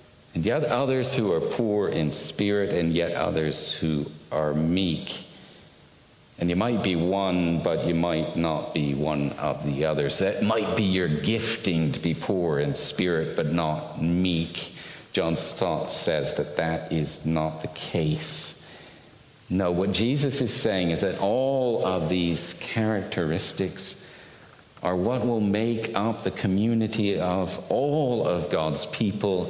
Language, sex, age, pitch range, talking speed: English, male, 50-69, 85-110 Hz, 150 wpm